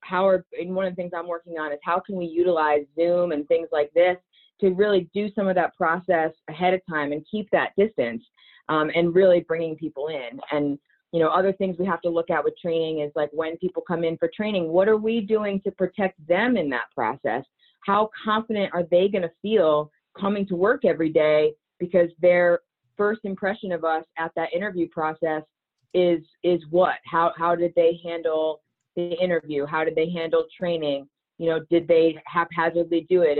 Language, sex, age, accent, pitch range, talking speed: English, female, 30-49, American, 155-180 Hz, 205 wpm